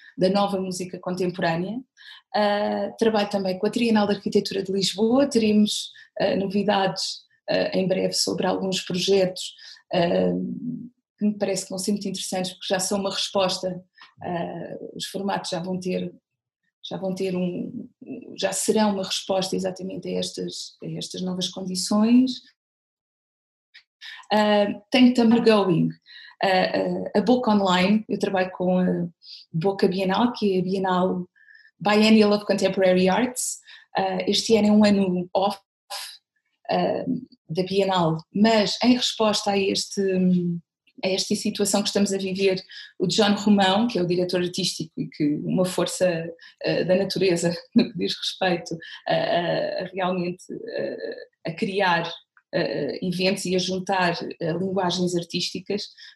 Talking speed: 135 wpm